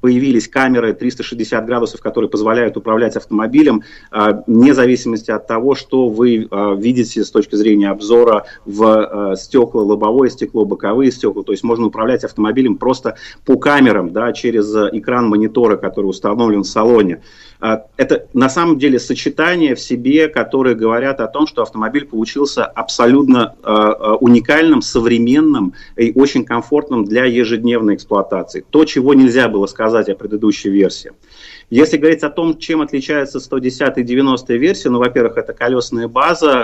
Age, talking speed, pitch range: 30-49, 140 wpm, 110-135 Hz